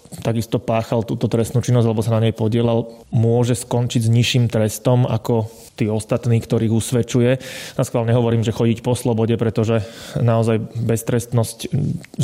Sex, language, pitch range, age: male, Slovak, 115-125 Hz, 20-39